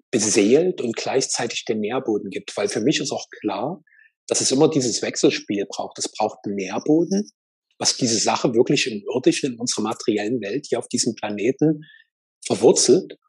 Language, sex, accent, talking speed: German, male, German, 165 wpm